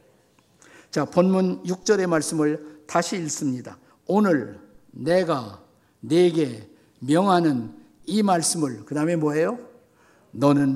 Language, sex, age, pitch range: Korean, male, 50-69, 145-185 Hz